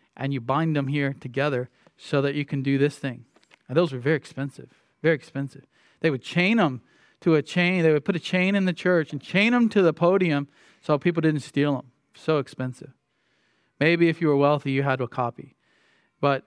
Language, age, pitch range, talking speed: English, 40-59, 145-190 Hz, 210 wpm